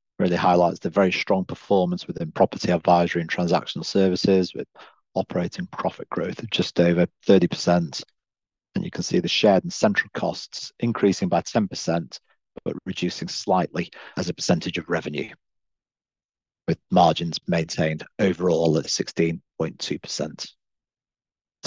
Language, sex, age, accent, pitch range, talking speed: English, male, 40-59, British, 85-100 Hz, 125 wpm